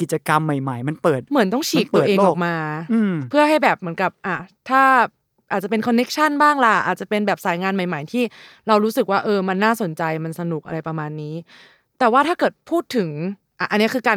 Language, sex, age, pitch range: Thai, female, 20-39, 170-235 Hz